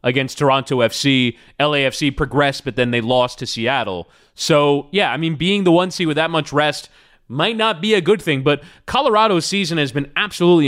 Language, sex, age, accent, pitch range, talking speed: English, male, 30-49, American, 140-195 Hz, 190 wpm